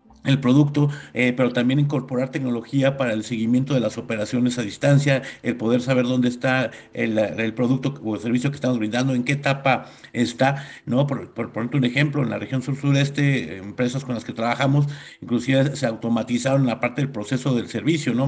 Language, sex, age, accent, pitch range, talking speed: Spanish, male, 50-69, Mexican, 120-140 Hz, 190 wpm